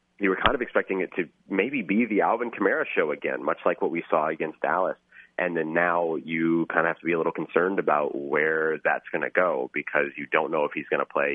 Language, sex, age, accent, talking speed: English, male, 30-49, American, 255 wpm